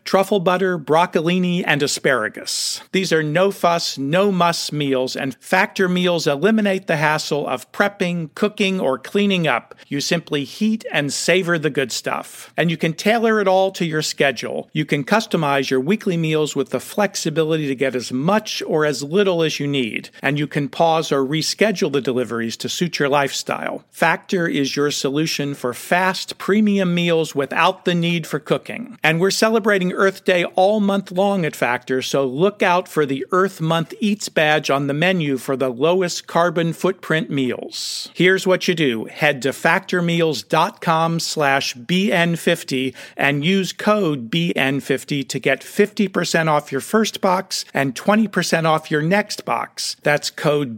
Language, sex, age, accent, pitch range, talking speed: English, male, 50-69, American, 145-190 Hz, 165 wpm